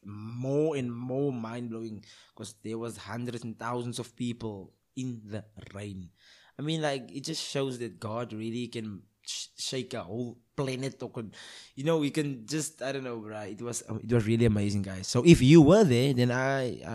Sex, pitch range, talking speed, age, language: male, 110-125 Hz, 190 wpm, 20-39, English